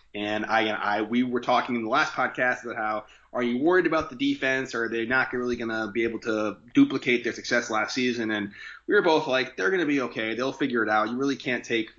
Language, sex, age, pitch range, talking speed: English, male, 30-49, 110-135 Hz, 260 wpm